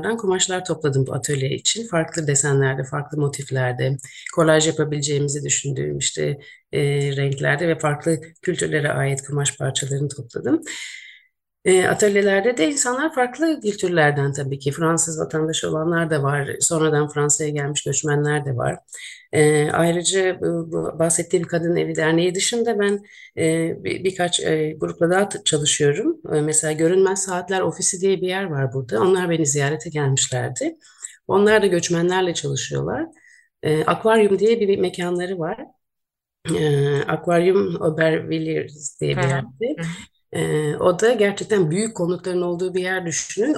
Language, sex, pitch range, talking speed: Turkish, female, 145-190 Hz, 120 wpm